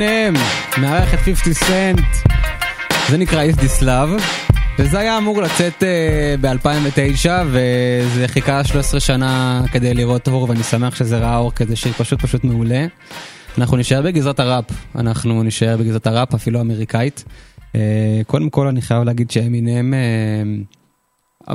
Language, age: Hebrew, 20-39